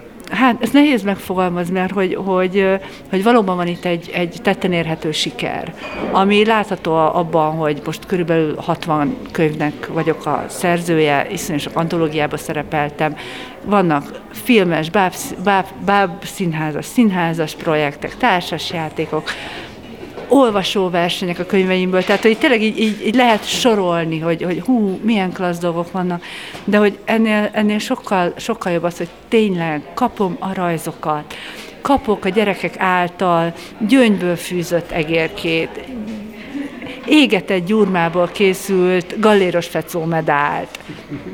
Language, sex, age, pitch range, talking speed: Hungarian, female, 50-69, 175-215 Hz, 120 wpm